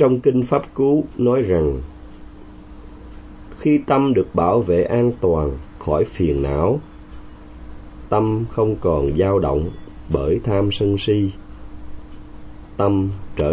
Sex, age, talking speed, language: male, 30-49, 120 wpm, Vietnamese